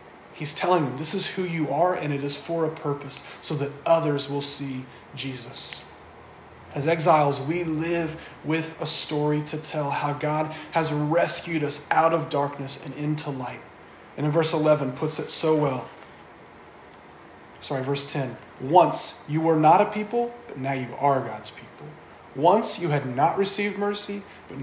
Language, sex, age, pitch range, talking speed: English, male, 30-49, 135-160 Hz, 170 wpm